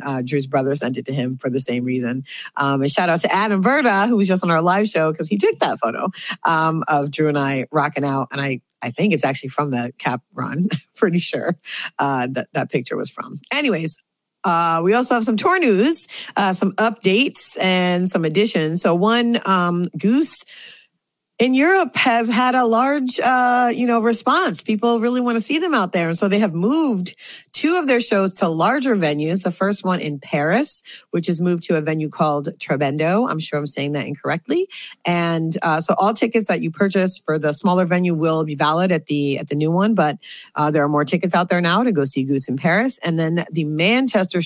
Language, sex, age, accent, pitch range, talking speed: English, female, 40-59, American, 150-215 Hz, 220 wpm